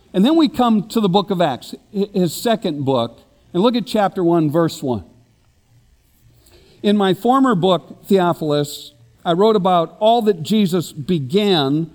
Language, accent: English, American